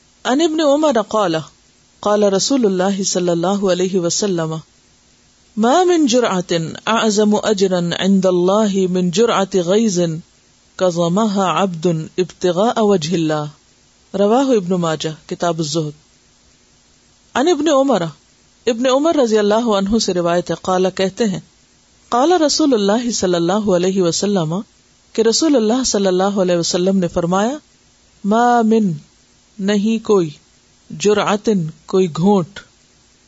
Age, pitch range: 50-69, 175-220 Hz